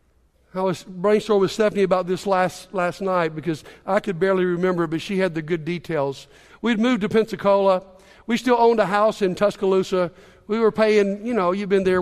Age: 50-69